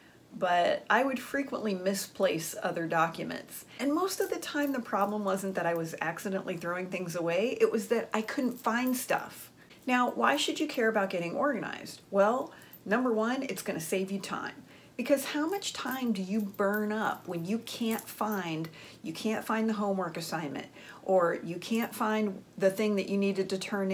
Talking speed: 185 wpm